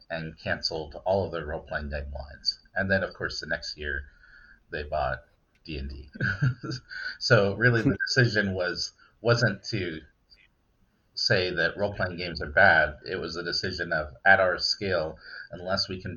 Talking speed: 165 wpm